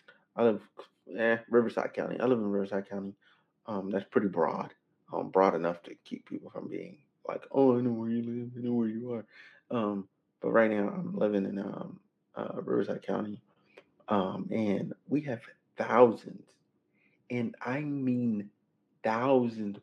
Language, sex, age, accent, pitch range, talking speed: English, male, 30-49, American, 100-120 Hz, 160 wpm